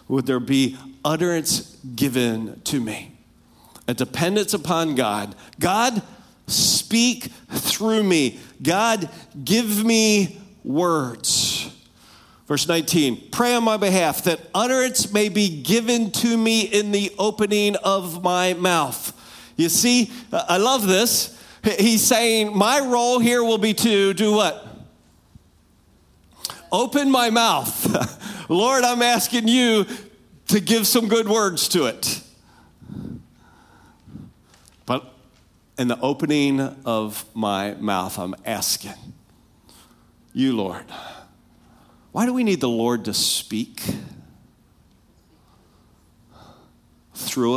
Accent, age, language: American, 50-69, English